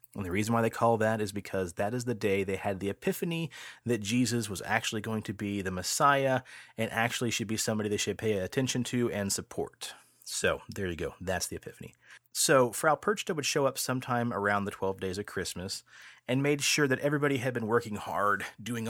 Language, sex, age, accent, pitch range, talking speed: English, male, 30-49, American, 95-125 Hz, 215 wpm